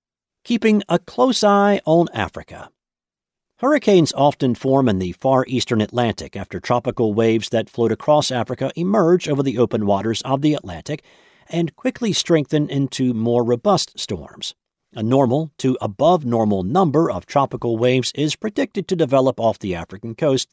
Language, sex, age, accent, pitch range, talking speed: English, male, 50-69, American, 115-160 Hz, 150 wpm